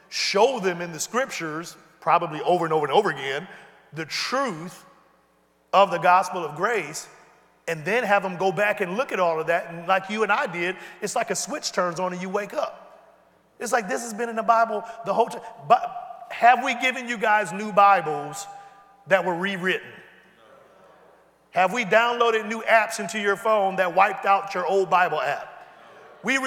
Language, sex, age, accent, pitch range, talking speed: English, male, 40-59, American, 170-230 Hz, 195 wpm